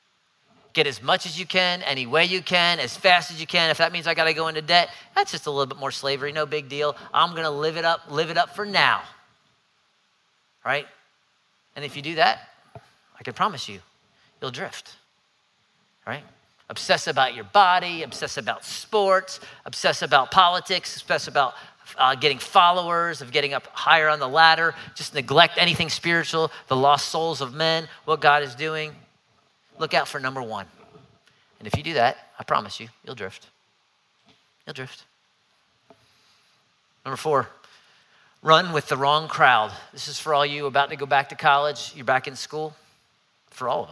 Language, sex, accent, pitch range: English, male, American, 140-170 Hz